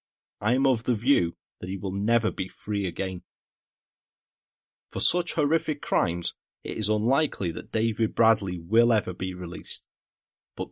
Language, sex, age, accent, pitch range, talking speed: English, male, 30-49, British, 95-145 Hz, 150 wpm